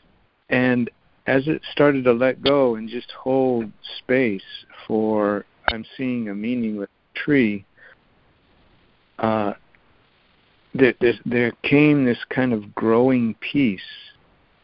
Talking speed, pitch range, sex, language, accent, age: 115 wpm, 110-135 Hz, male, English, American, 60-79